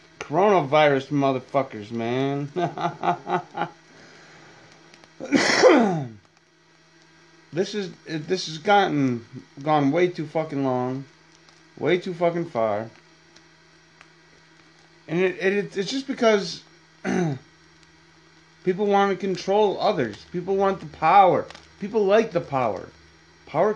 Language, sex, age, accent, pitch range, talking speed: English, male, 30-49, American, 135-175 Hz, 95 wpm